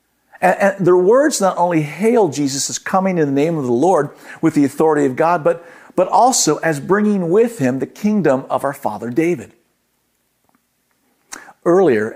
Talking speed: 170 wpm